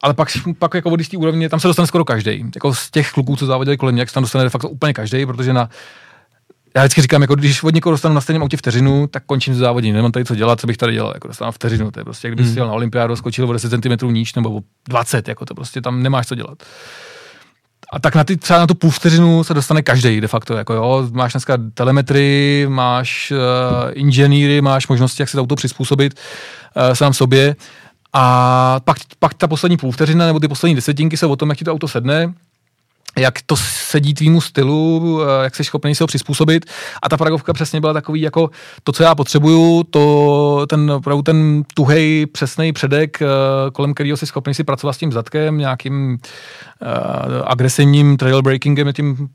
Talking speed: 210 wpm